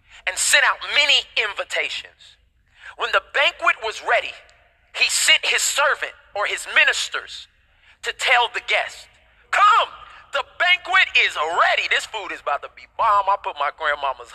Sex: male